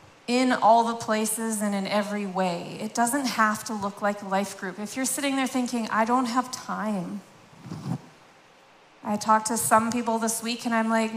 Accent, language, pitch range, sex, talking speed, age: American, English, 225-305 Hz, female, 190 wpm, 30-49